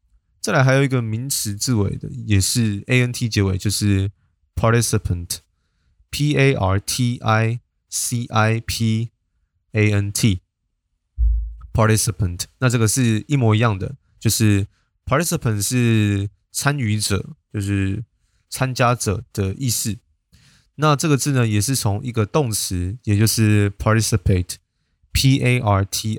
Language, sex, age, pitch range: Chinese, male, 20-39, 95-115 Hz